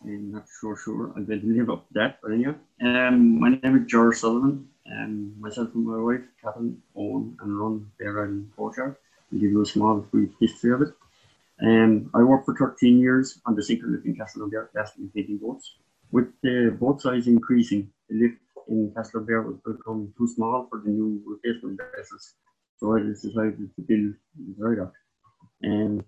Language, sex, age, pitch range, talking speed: English, male, 30-49, 105-125 Hz, 200 wpm